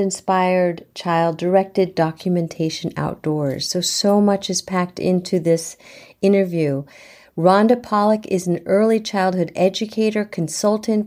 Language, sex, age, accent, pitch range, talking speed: English, female, 50-69, American, 175-215 Hz, 115 wpm